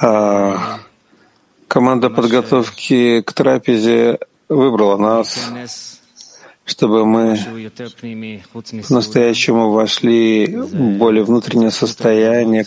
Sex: male